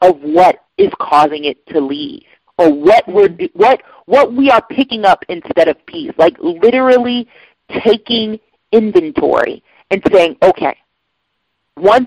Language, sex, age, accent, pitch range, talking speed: English, female, 40-59, American, 185-310 Hz, 135 wpm